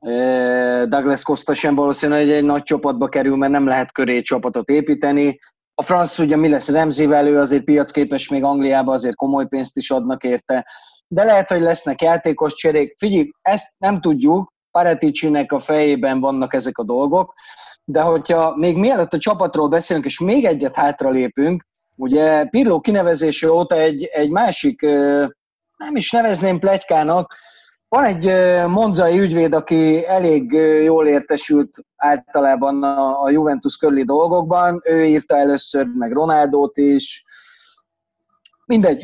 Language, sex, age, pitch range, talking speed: Hungarian, male, 30-49, 140-175 Hz, 140 wpm